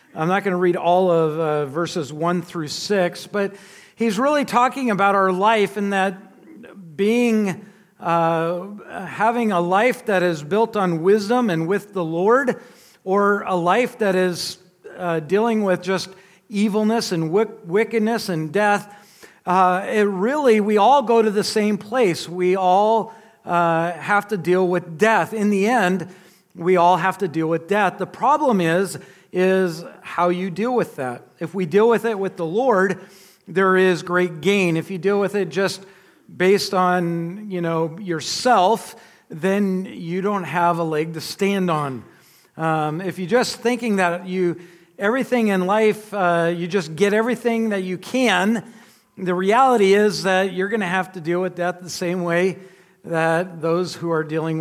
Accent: American